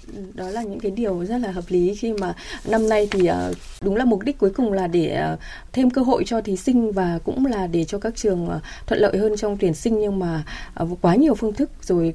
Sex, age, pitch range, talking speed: female, 20-39, 180-235 Hz, 235 wpm